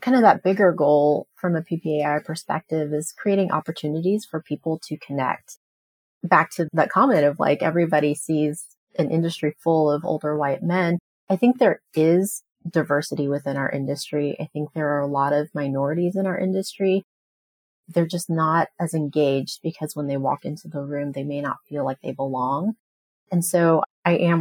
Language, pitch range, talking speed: English, 145-175 Hz, 180 wpm